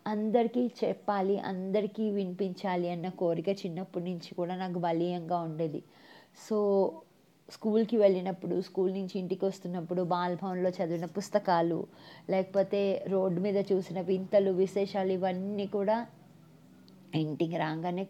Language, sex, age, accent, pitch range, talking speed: Telugu, female, 20-39, native, 180-205 Hz, 105 wpm